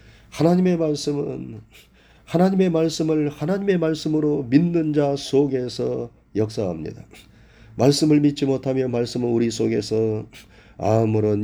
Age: 40-59